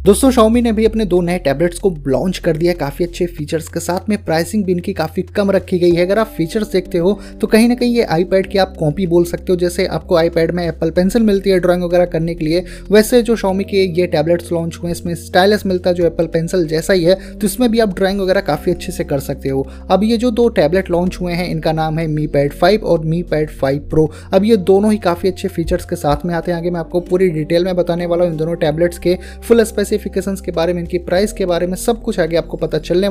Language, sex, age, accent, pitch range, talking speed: Hindi, male, 20-39, native, 170-195 Hz, 270 wpm